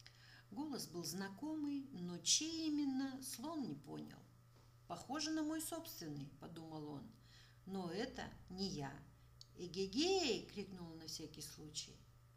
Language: Russian